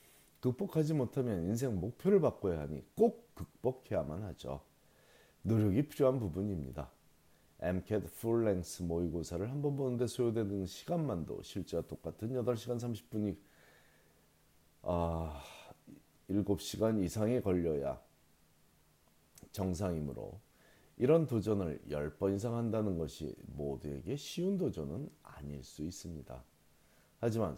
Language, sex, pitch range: Korean, male, 80-115 Hz